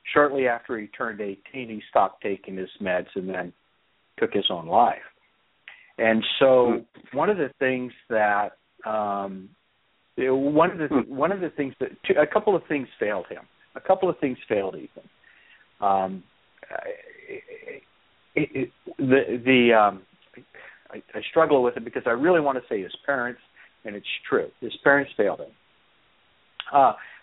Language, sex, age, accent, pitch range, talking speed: English, male, 60-79, American, 105-145 Hz, 160 wpm